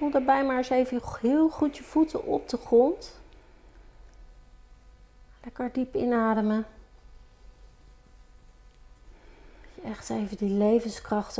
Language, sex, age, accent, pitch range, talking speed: Dutch, female, 40-59, Dutch, 205-250 Hz, 105 wpm